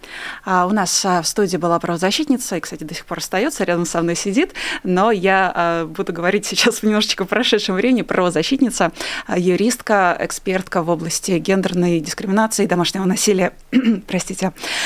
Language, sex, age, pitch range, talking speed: Russian, female, 20-39, 175-220 Hz, 160 wpm